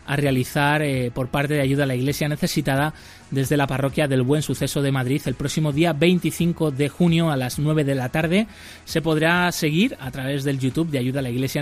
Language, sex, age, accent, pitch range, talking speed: Spanish, male, 20-39, Spanish, 130-150 Hz, 220 wpm